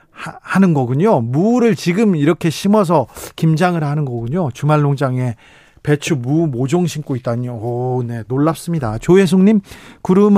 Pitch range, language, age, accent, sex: 135-175 Hz, Korean, 40-59, native, male